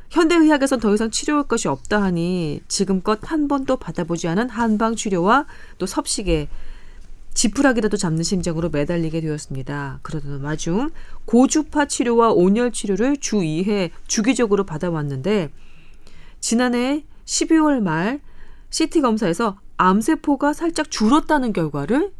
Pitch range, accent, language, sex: 170-275 Hz, native, Korean, female